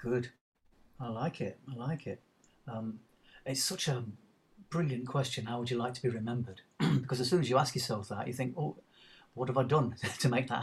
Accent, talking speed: British, 215 wpm